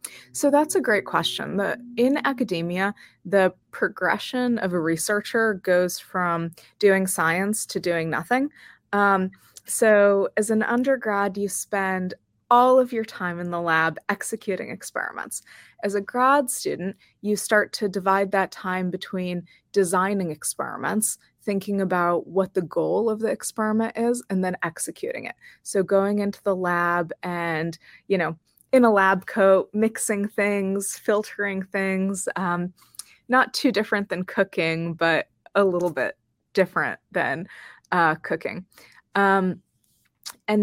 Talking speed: 135 wpm